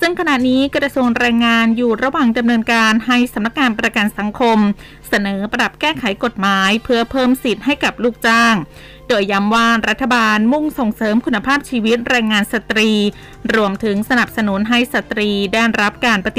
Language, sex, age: Thai, female, 20-39